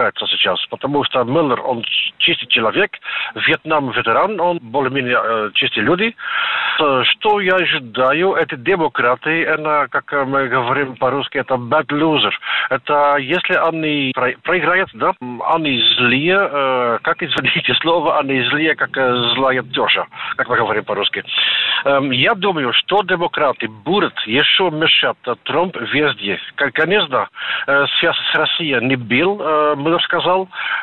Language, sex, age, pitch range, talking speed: Russian, male, 50-69, 125-160 Hz, 120 wpm